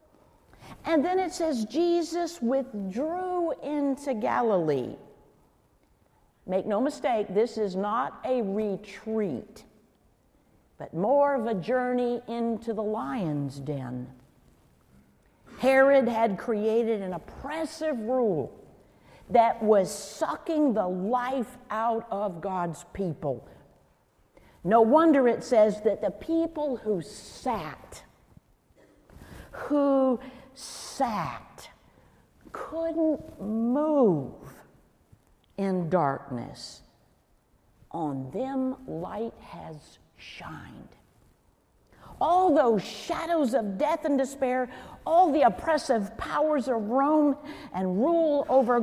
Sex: female